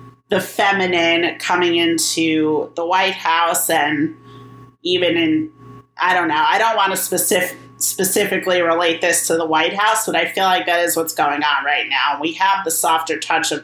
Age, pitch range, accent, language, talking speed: 30-49, 155-190 Hz, American, English, 185 wpm